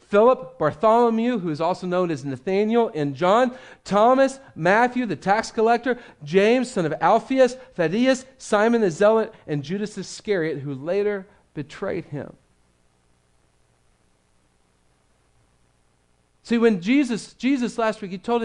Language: English